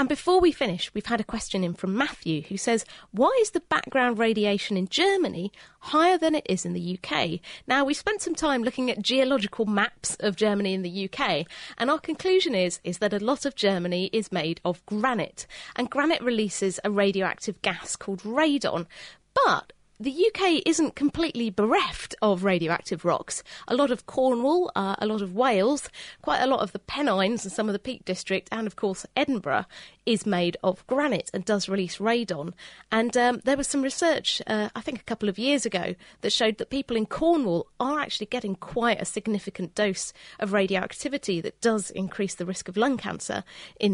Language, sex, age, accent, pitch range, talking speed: English, female, 30-49, British, 190-270 Hz, 195 wpm